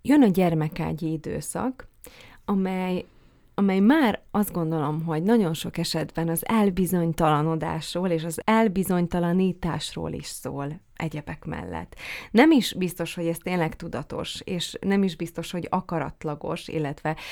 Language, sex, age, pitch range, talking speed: Hungarian, female, 30-49, 155-185 Hz, 125 wpm